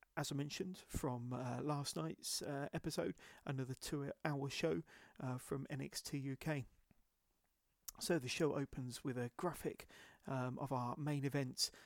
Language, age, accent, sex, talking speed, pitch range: English, 40-59, British, male, 140 wpm, 125-150 Hz